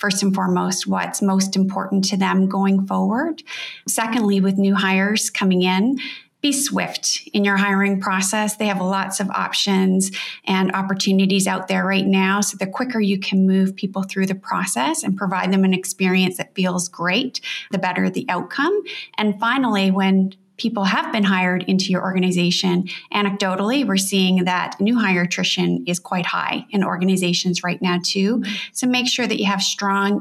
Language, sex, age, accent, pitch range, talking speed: English, female, 30-49, American, 190-215 Hz, 175 wpm